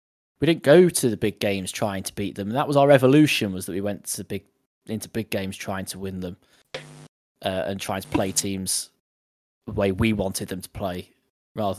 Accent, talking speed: British, 220 wpm